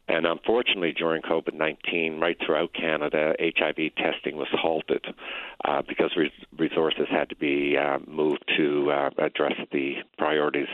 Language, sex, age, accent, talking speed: English, male, 50-69, American, 135 wpm